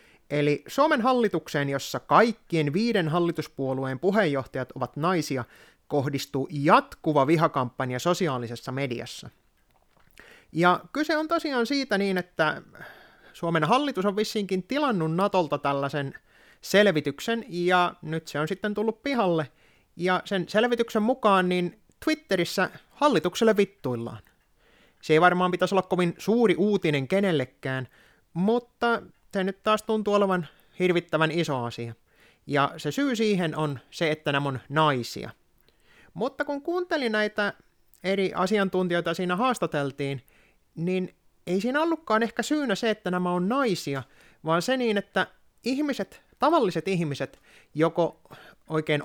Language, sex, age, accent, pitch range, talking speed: Finnish, male, 30-49, native, 145-210 Hz, 125 wpm